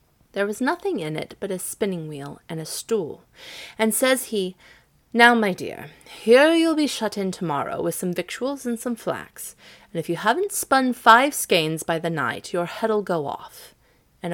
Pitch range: 175-235 Hz